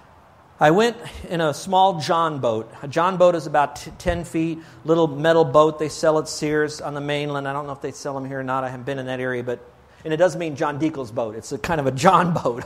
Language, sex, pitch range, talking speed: English, male, 140-175 Hz, 265 wpm